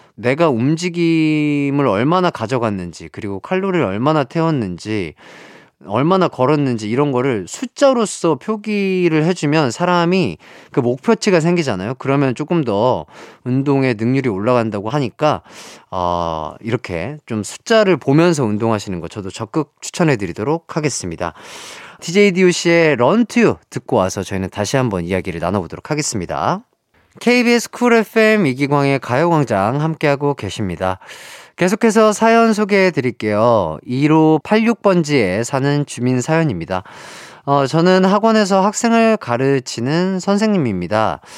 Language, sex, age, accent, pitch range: Korean, male, 30-49, native, 115-185 Hz